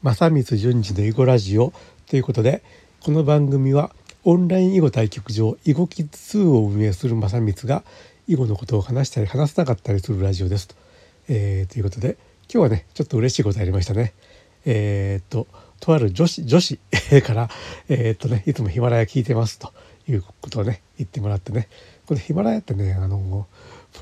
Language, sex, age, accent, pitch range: Japanese, male, 60-79, native, 105-145 Hz